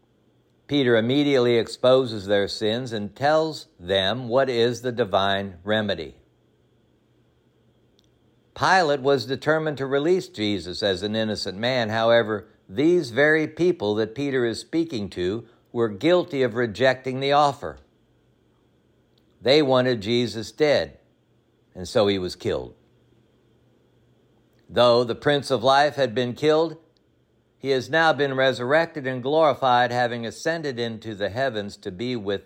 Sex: male